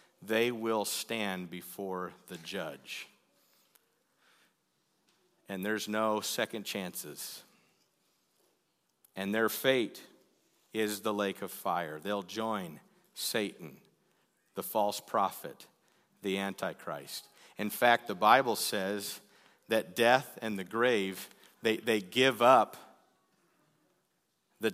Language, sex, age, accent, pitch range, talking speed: English, male, 50-69, American, 100-120 Hz, 100 wpm